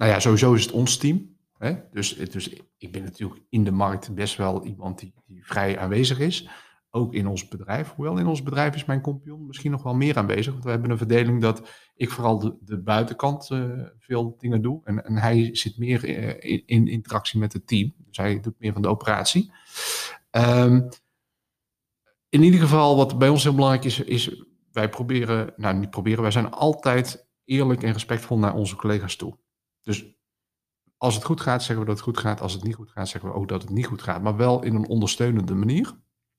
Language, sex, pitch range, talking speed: Dutch, male, 105-125 Hz, 215 wpm